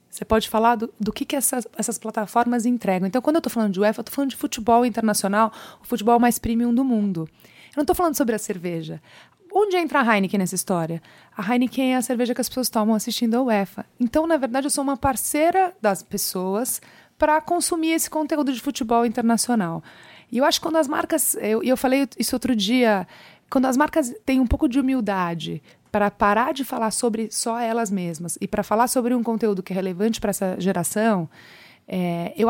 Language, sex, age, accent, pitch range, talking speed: Portuguese, female, 30-49, Brazilian, 200-255 Hz, 210 wpm